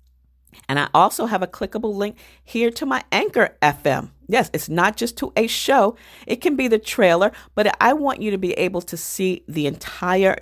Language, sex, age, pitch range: English, female, 40-59, 150-210 Hz